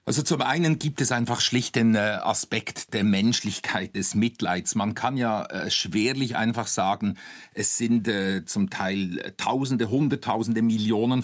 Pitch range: 115-145 Hz